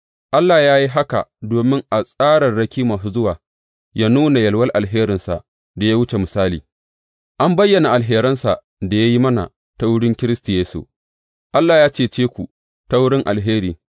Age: 30-49